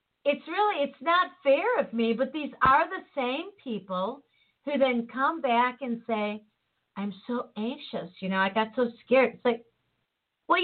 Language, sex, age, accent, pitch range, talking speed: English, female, 50-69, American, 200-265 Hz, 175 wpm